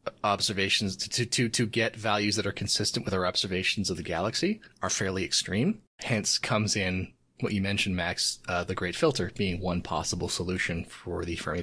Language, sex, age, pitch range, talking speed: English, male, 30-49, 95-115 Hz, 185 wpm